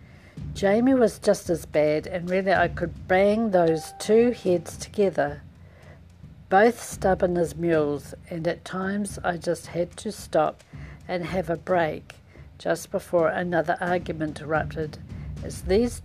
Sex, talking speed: female, 140 wpm